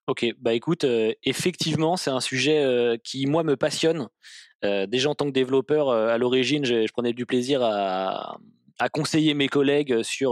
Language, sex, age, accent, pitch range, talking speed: French, male, 20-39, French, 120-150 Hz, 190 wpm